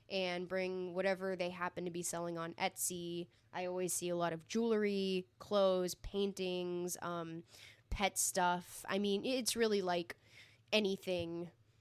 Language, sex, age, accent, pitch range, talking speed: English, female, 10-29, American, 170-200 Hz, 140 wpm